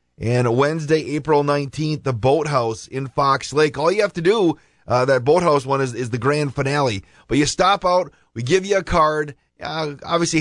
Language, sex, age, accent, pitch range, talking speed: English, male, 30-49, American, 125-160 Hz, 195 wpm